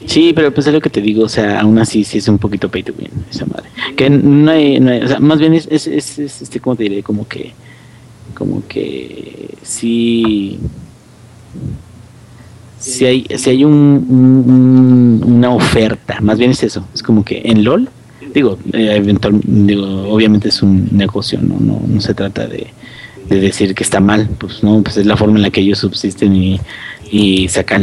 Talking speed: 200 wpm